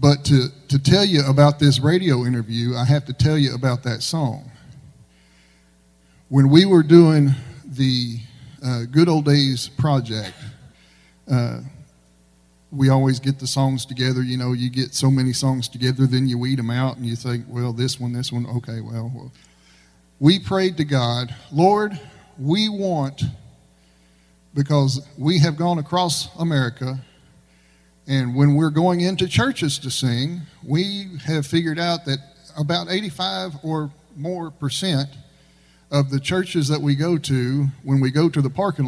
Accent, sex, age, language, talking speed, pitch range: American, male, 40-59, English, 155 wpm, 120-160 Hz